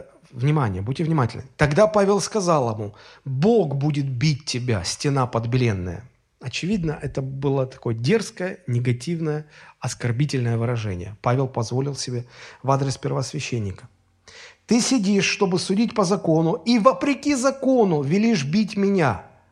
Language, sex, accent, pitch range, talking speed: Russian, male, native, 120-200 Hz, 120 wpm